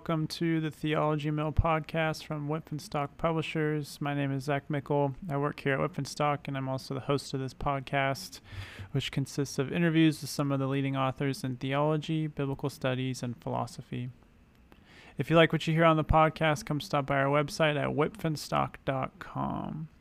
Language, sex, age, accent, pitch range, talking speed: English, male, 30-49, American, 130-150 Hz, 175 wpm